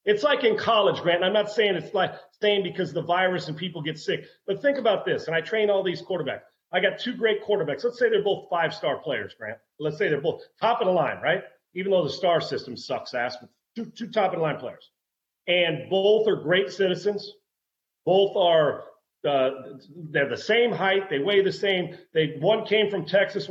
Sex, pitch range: male, 170-205 Hz